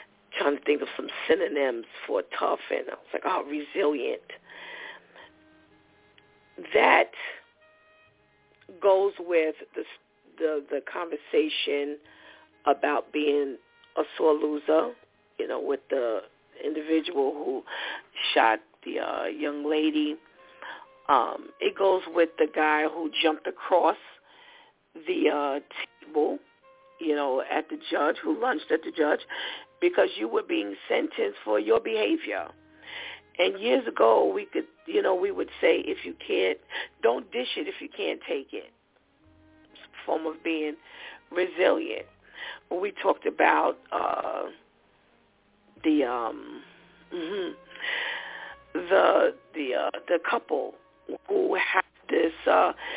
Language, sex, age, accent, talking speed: English, female, 40-59, American, 125 wpm